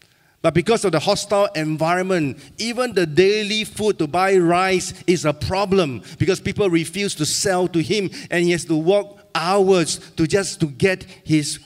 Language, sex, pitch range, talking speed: English, male, 125-170 Hz, 175 wpm